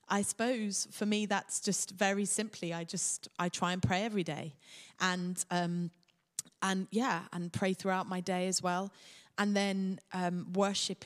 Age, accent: 20-39, British